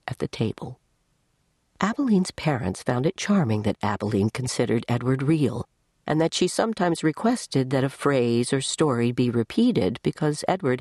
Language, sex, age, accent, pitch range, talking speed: English, female, 50-69, American, 120-160 Hz, 150 wpm